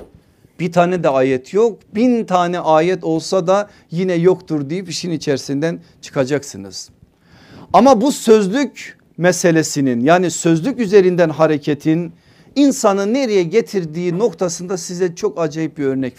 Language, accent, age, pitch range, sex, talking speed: Turkish, native, 50-69, 145-205 Hz, male, 120 wpm